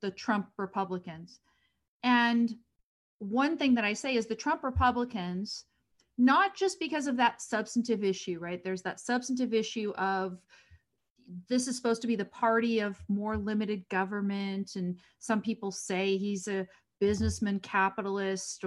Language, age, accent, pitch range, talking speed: English, 40-59, American, 190-240 Hz, 145 wpm